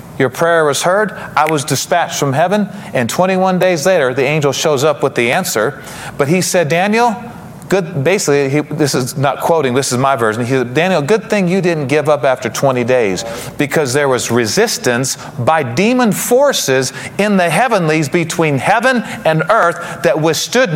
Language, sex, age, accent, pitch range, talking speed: English, male, 40-59, American, 140-180 Hz, 175 wpm